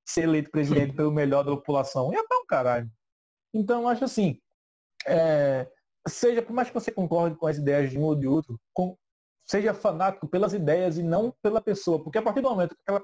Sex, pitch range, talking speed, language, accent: male, 145-195 Hz, 210 wpm, Portuguese, Brazilian